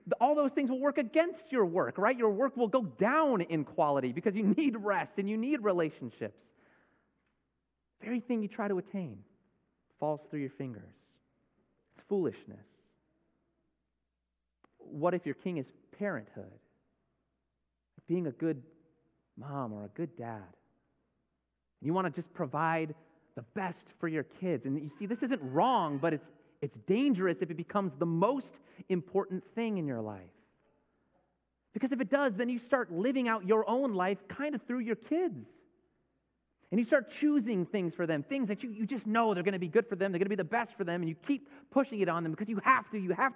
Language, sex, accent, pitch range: English, male, American, 140-230 Hz